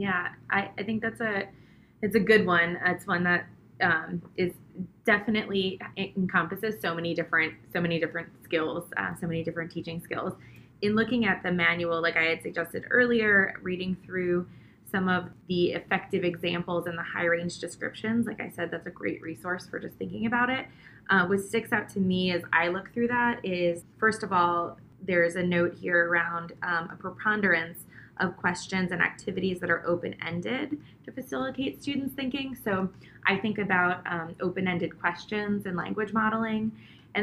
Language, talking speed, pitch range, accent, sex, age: English, 175 wpm, 175-205 Hz, American, female, 20-39